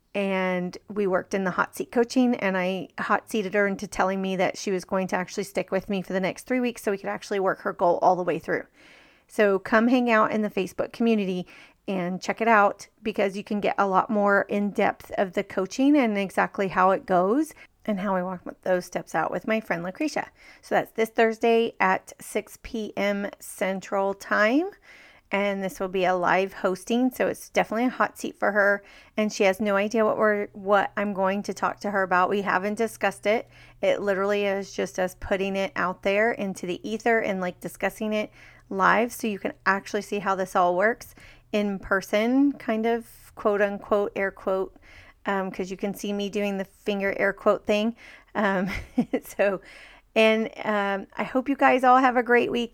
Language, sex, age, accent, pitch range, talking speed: English, female, 30-49, American, 190-220 Hz, 210 wpm